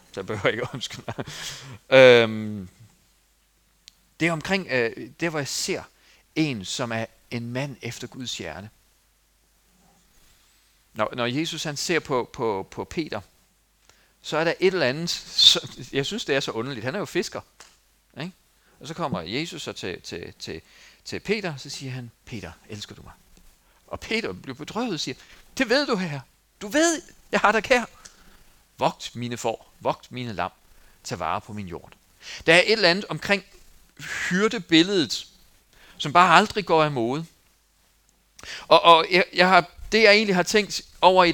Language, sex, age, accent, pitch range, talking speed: Danish, male, 40-59, native, 130-210 Hz, 175 wpm